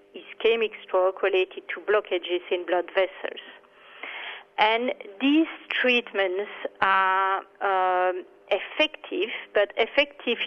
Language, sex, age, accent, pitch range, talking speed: English, female, 40-59, French, 195-250 Hz, 90 wpm